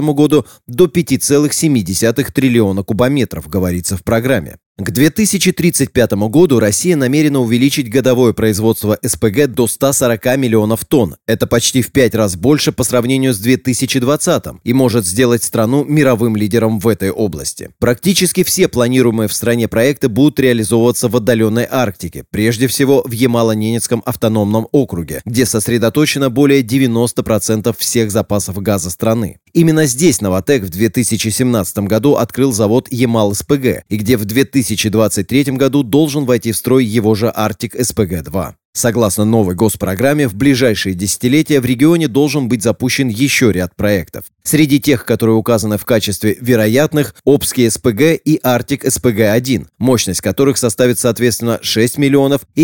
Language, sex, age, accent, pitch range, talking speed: Russian, male, 30-49, native, 110-135 Hz, 140 wpm